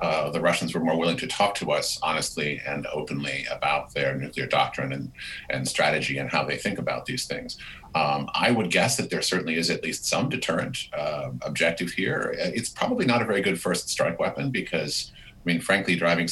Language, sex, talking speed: English, male, 205 wpm